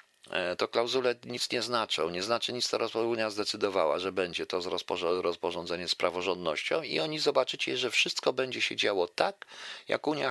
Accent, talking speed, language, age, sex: native, 165 wpm, Polish, 50-69, male